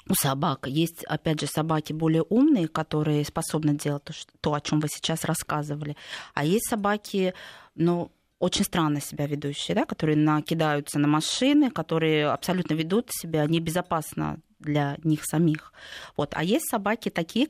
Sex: female